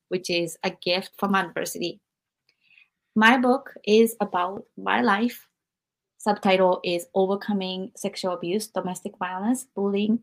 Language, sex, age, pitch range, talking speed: English, female, 20-39, 180-210 Hz, 125 wpm